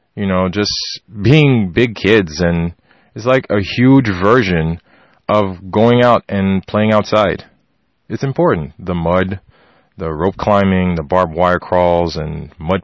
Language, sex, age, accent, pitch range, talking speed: English, male, 20-39, American, 95-125 Hz, 145 wpm